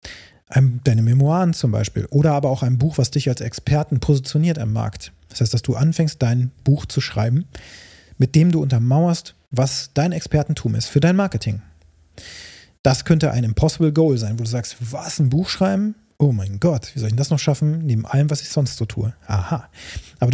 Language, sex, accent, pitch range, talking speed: German, male, German, 115-155 Hz, 200 wpm